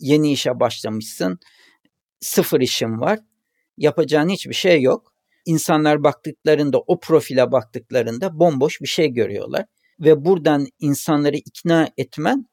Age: 60-79